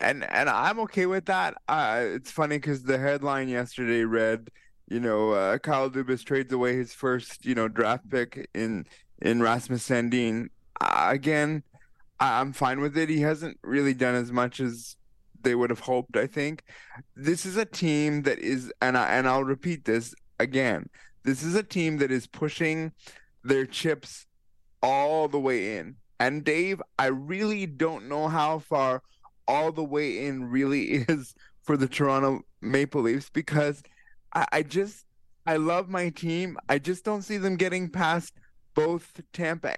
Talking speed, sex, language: 170 wpm, male, English